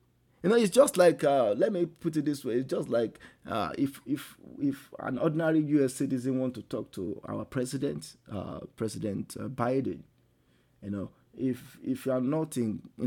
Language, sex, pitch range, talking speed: English, male, 125-170 Hz, 190 wpm